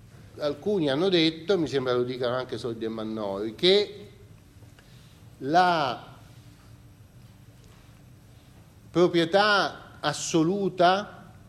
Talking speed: 80 wpm